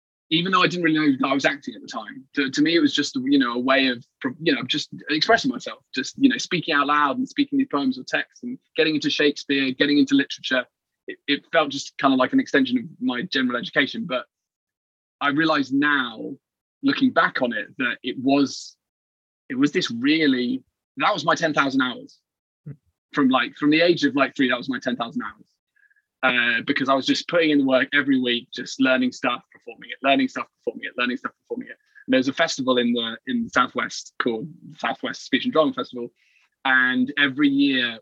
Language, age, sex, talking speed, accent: English, 20-39, male, 210 wpm, British